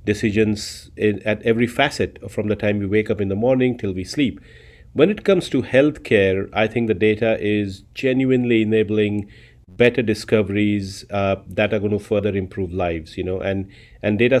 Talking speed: 180 wpm